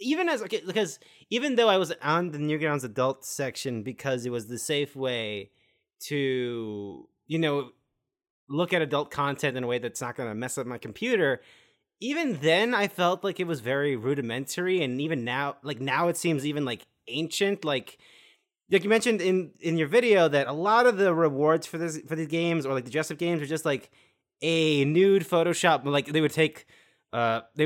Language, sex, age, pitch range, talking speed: English, male, 30-49, 125-165 Hz, 200 wpm